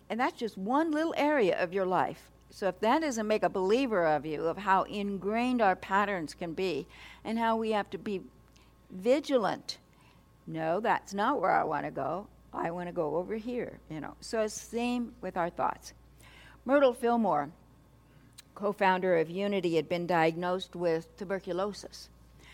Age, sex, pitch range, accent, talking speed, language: 60-79, female, 170-225 Hz, American, 175 wpm, English